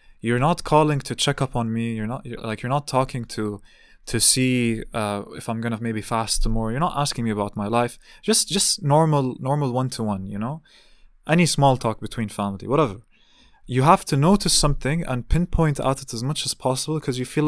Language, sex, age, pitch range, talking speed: English, male, 20-39, 115-155 Hz, 215 wpm